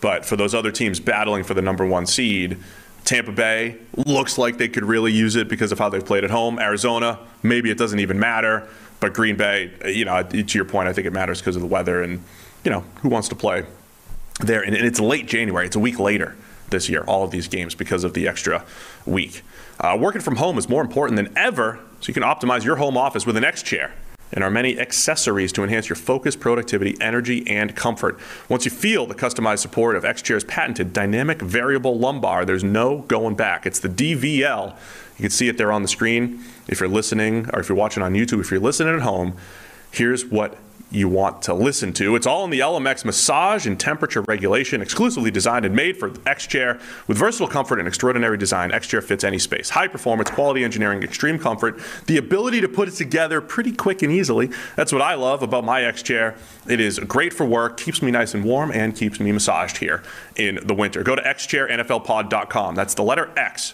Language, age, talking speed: English, 30-49, 215 wpm